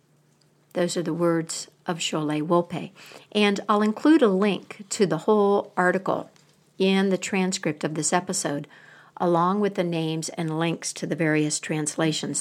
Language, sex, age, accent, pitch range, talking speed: English, female, 60-79, American, 155-190 Hz, 155 wpm